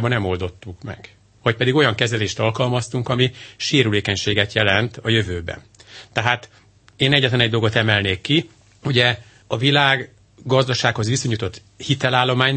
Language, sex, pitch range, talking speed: Hungarian, male, 105-125 Hz, 125 wpm